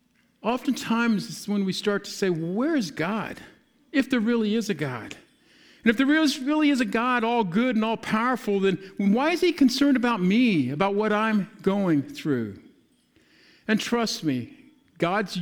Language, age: English, 50-69